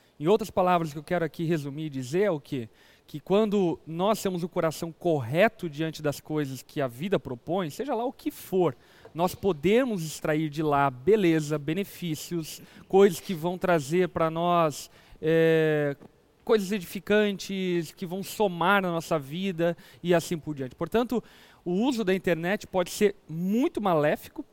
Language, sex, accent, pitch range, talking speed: Portuguese, male, Brazilian, 160-200 Hz, 165 wpm